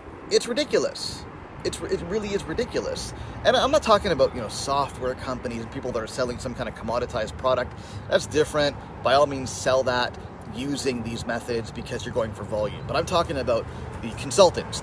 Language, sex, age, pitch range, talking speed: English, male, 30-49, 105-145 Hz, 185 wpm